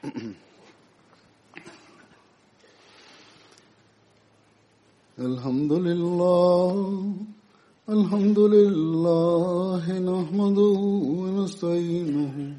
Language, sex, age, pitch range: Swahili, male, 50-69, 160-195 Hz